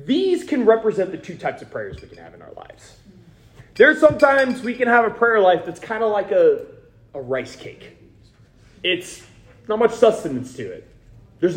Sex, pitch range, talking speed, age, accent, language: male, 160-250 Hz, 190 wpm, 30-49, American, English